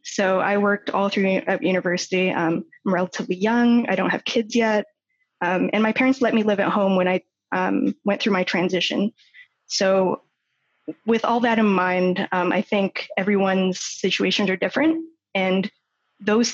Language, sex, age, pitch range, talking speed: English, female, 20-39, 185-220 Hz, 165 wpm